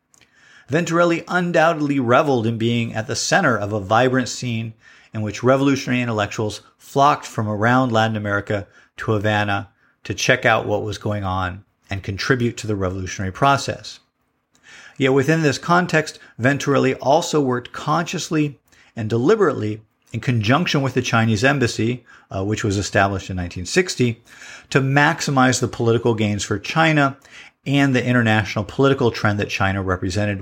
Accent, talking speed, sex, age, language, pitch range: American, 145 wpm, male, 50-69, English, 105-135 Hz